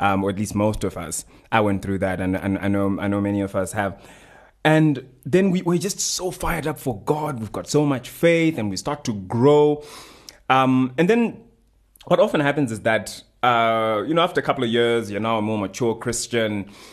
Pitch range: 100-135 Hz